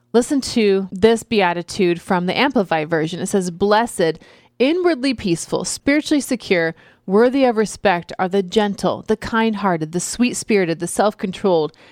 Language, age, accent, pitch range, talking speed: English, 30-49, American, 175-220 Hz, 150 wpm